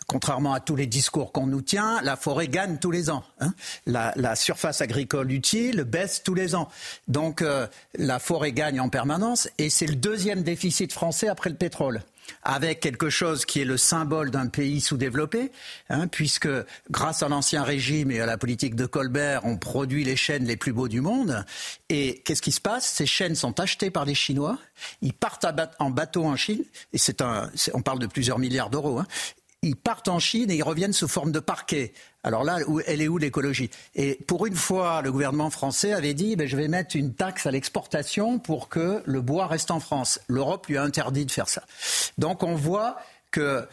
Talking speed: 205 wpm